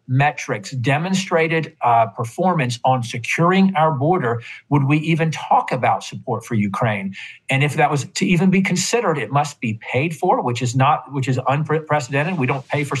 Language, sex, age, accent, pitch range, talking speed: English, male, 50-69, American, 125-150 Hz, 180 wpm